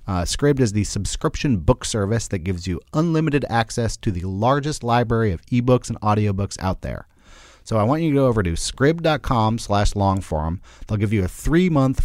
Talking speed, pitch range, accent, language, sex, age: 185 wpm, 95-135 Hz, American, English, male, 30-49